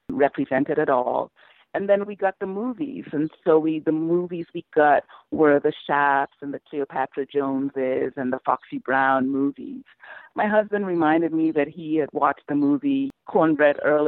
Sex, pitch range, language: female, 140-200 Hz, English